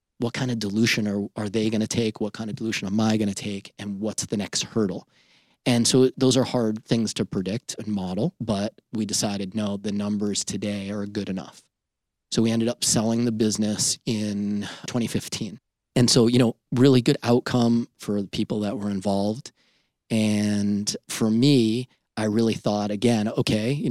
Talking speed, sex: 190 wpm, male